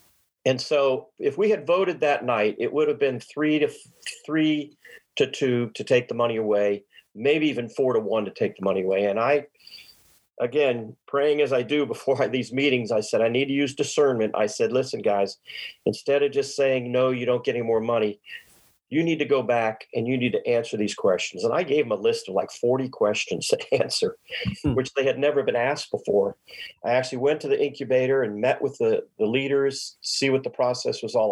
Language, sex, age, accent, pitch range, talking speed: English, male, 40-59, American, 120-150 Hz, 220 wpm